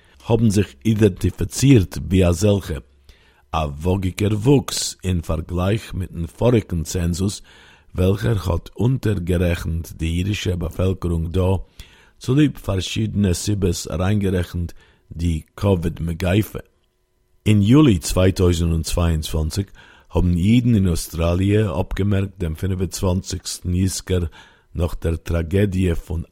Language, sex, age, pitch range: Hebrew, male, 50-69, 85-100 Hz